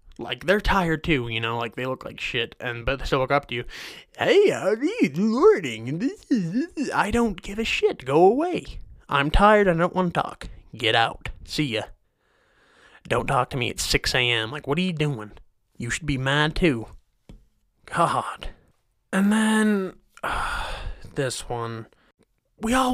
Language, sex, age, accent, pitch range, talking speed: English, male, 20-39, American, 120-185 Hz, 175 wpm